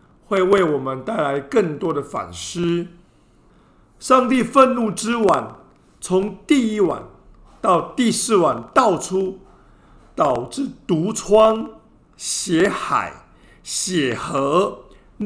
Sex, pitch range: male, 155-220 Hz